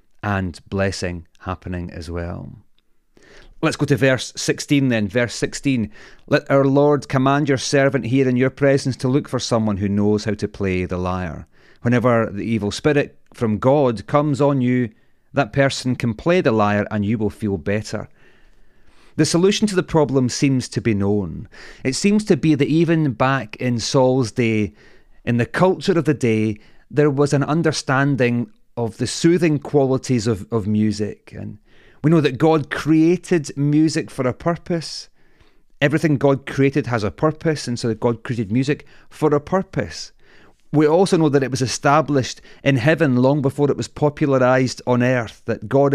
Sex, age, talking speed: male, 30-49, 170 wpm